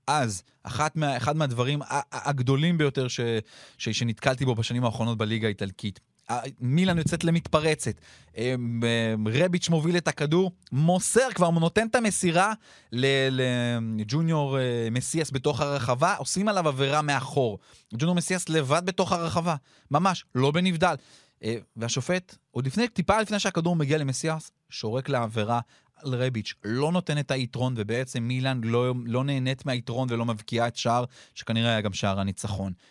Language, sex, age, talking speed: Hebrew, male, 30-49, 130 wpm